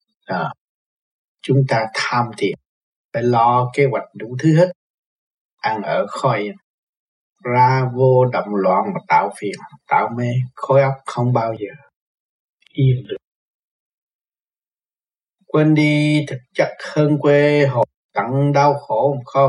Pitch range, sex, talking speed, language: 125-145 Hz, male, 130 wpm, Vietnamese